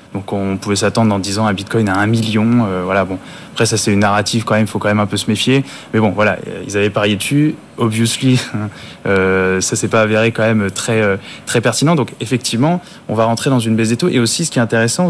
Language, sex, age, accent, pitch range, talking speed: French, male, 20-39, French, 110-140 Hz, 260 wpm